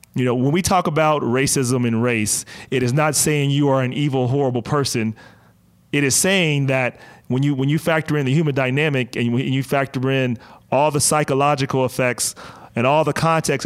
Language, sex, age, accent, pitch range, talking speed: English, male, 40-59, American, 120-150 Hz, 195 wpm